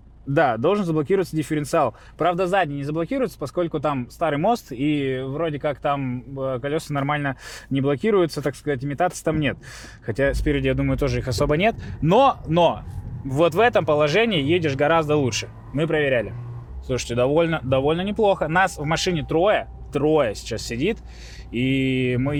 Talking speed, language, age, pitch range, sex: 155 wpm, Russian, 20-39, 125-165 Hz, male